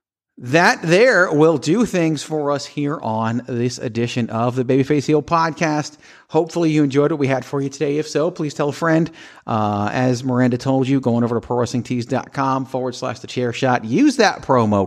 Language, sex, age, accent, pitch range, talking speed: English, male, 40-59, American, 110-140 Hz, 200 wpm